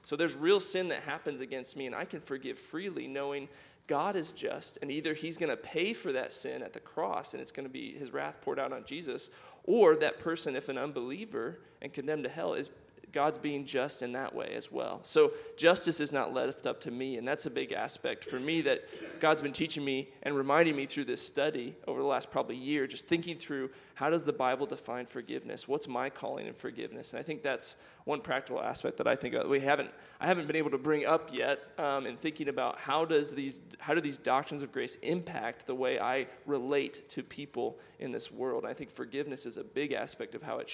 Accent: American